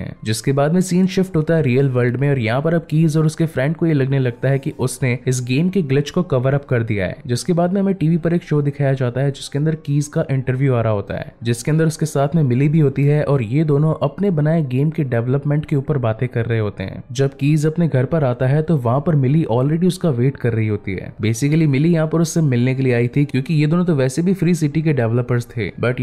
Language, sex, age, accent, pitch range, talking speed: Hindi, male, 20-39, native, 125-160 Hz, 190 wpm